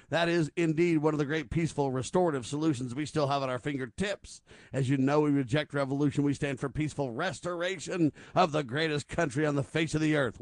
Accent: American